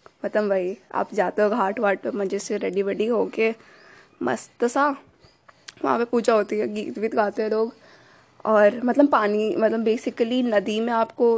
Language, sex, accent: Hindi, female, native